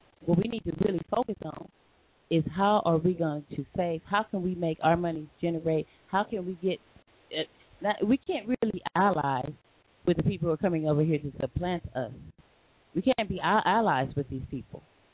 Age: 30-49